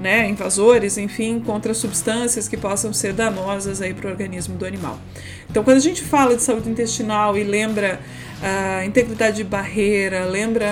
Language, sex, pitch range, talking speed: Portuguese, female, 210-260 Hz, 170 wpm